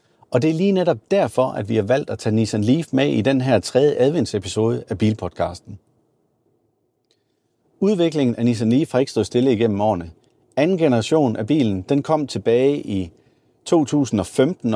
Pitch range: 110-145 Hz